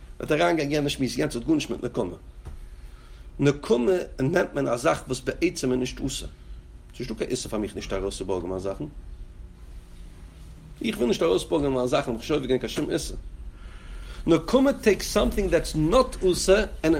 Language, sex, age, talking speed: English, male, 50-69, 40 wpm